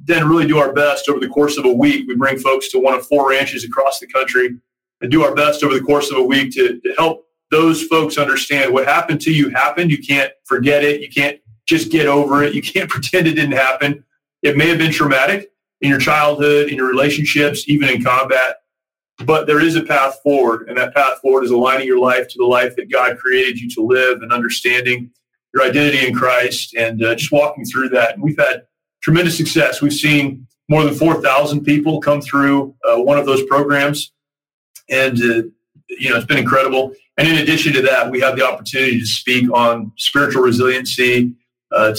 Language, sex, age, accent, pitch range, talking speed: English, male, 30-49, American, 125-150 Hz, 210 wpm